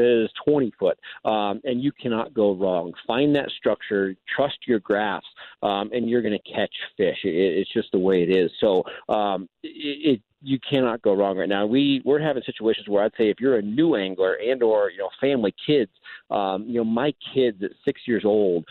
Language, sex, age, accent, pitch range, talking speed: English, male, 40-59, American, 105-135 Hz, 210 wpm